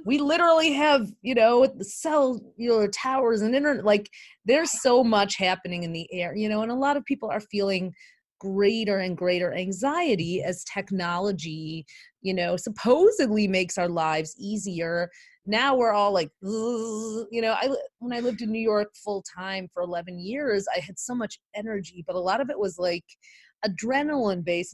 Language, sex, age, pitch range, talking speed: English, female, 30-49, 185-235 Hz, 180 wpm